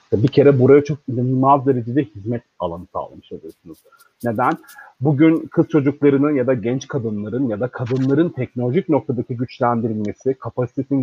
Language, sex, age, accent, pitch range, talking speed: Turkish, male, 40-59, native, 120-160 Hz, 135 wpm